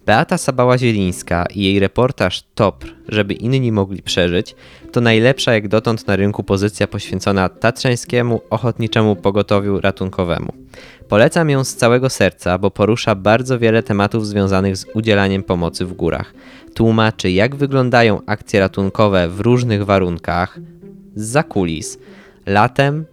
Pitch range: 95-125 Hz